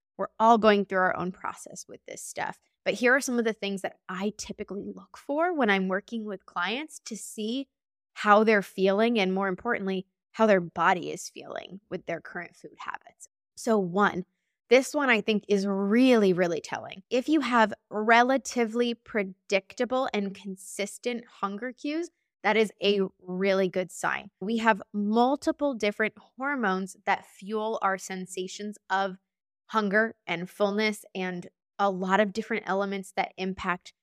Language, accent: English, American